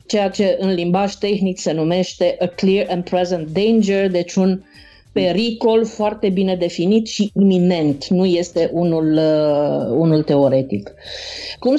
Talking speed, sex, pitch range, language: 130 wpm, female, 185-225 Hz, Romanian